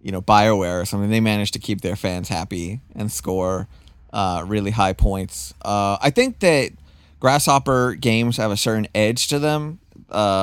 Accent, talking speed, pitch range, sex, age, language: American, 180 wpm, 100-120 Hz, male, 20-39, German